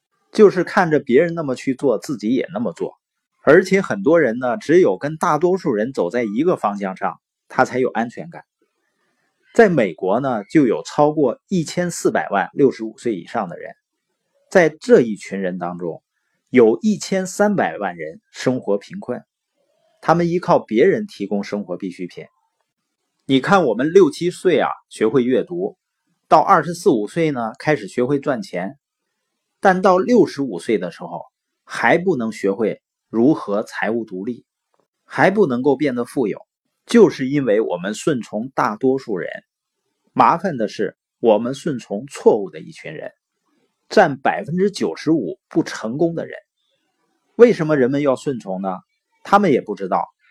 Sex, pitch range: male, 125-195 Hz